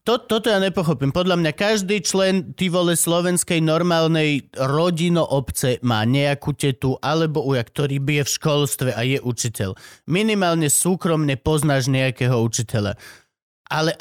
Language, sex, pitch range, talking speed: Slovak, male, 140-185 Hz, 135 wpm